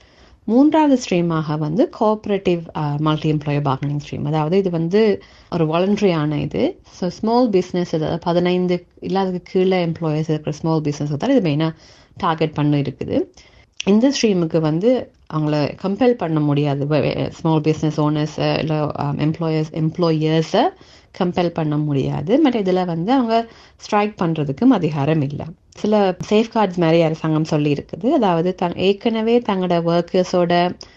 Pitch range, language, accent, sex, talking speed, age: 155-190 Hz, Tamil, native, female, 120 wpm, 30-49